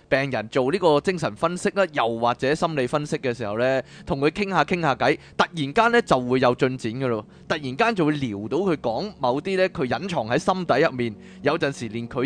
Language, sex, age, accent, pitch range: Chinese, male, 20-39, native, 120-190 Hz